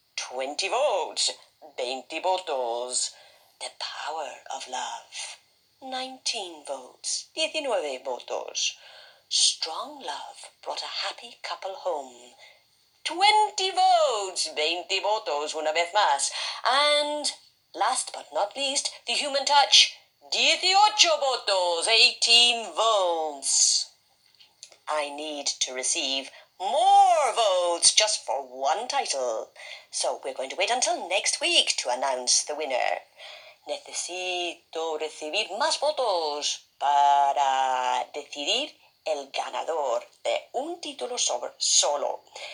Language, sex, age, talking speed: English, female, 50-69, 100 wpm